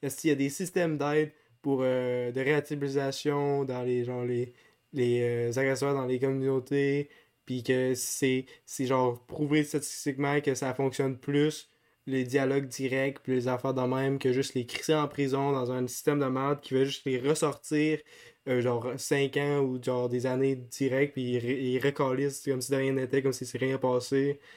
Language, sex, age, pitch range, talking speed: French, male, 20-39, 125-145 Hz, 195 wpm